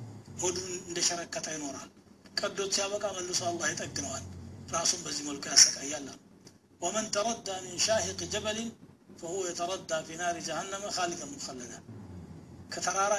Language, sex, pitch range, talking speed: Amharic, male, 145-195 Hz, 90 wpm